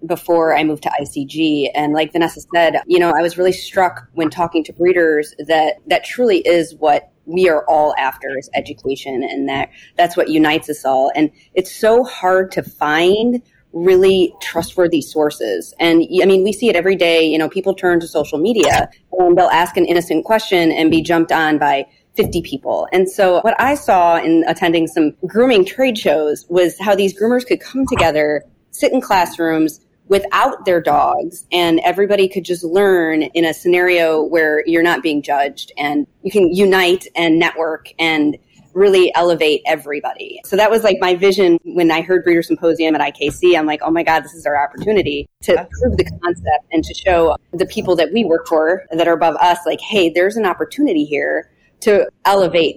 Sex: female